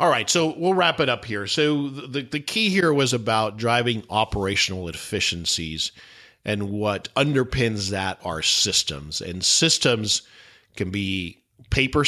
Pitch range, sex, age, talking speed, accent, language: 95-120 Hz, male, 50-69, 145 wpm, American, English